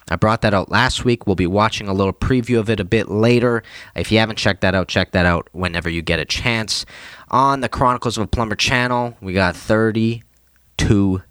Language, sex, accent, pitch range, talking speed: English, male, American, 95-120 Hz, 220 wpm